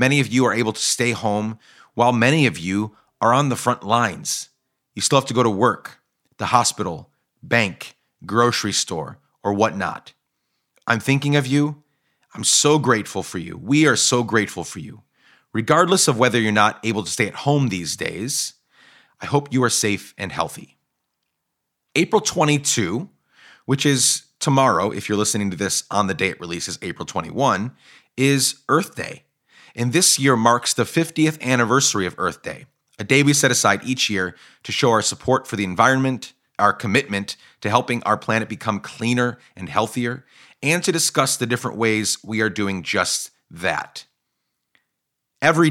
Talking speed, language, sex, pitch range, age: 175 wpm, English, male, 105-135 Hz, 30-49